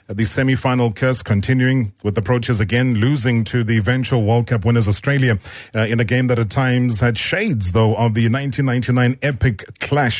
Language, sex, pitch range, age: English, male, 110-130 Hz, 40-59